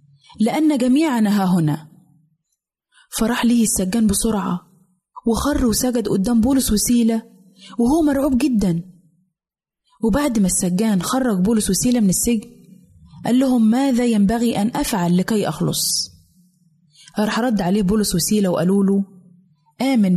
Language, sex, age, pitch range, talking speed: Arabic, female, 20-39, 185-250 Hz, 120 wpm